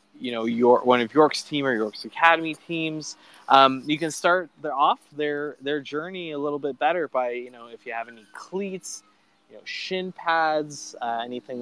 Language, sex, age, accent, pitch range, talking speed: English, male, 20-39, American, 125-170 Hz, 195 wpm